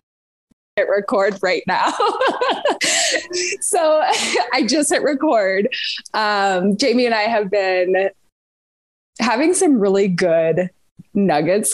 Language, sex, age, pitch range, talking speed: English, female, 20-39, 170-225 Hz, 95 wpm